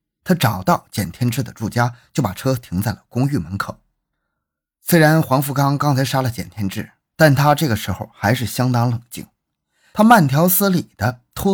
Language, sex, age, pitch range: Chinese, male, 20-39, 110-155 Hz